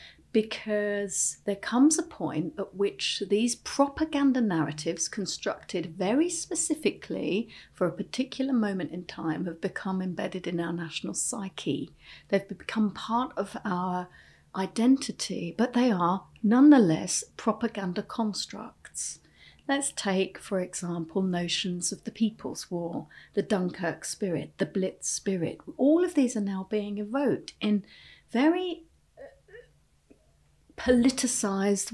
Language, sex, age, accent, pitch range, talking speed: English, female, 40-59, British, 190-260 Hz, 120 wpm